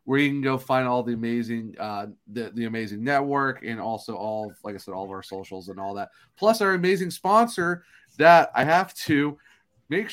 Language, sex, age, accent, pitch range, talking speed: English, male, 30-49, American, 110-135 Hz, 215 wpm